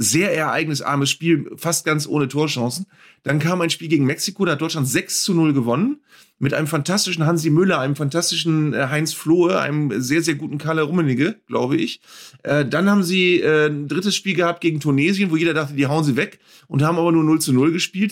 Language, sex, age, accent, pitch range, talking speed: German, male, 30-49, German, 145-180 Hz, 200 wpm